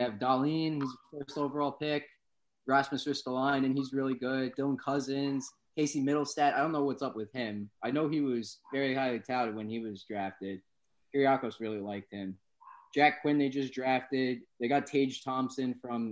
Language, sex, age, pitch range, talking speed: English, male, 20-39, 105-135 Hz, 185 wpm